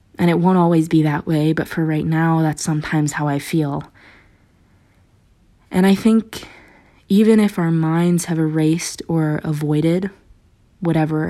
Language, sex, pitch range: English, female, 150-170 Hz